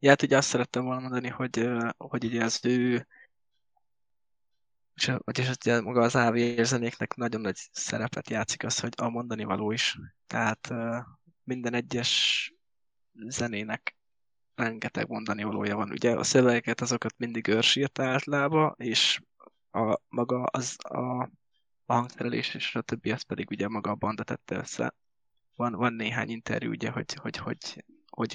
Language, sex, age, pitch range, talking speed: Hungarian, male, 20-39, 115-125 Hz, 145 wpm